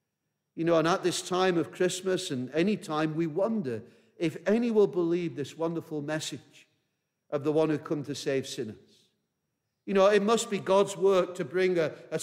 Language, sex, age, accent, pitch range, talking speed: English, male, 50-69, British, 155-195 Hz, 190 wpm